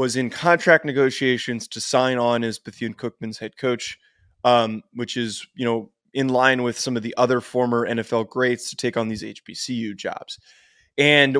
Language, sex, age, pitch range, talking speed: English, male, 20-39, 120-140 Hz, 175 wpm